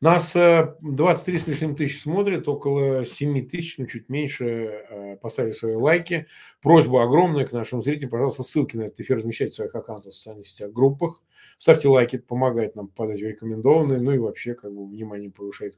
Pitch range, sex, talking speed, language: 125-175 Hz, male, 190 wpm, Russian